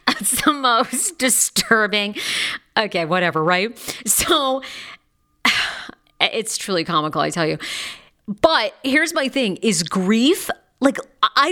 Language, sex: English, female